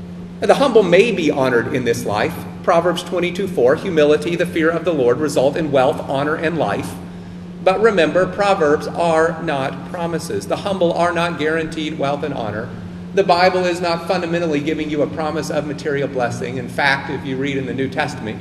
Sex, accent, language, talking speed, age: male, American, English, 185 wpm, 40-59